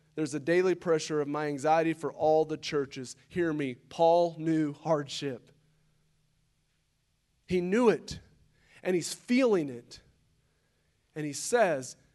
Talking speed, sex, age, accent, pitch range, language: 130 wpm, male, 30-49, American, 150-210 Hz, English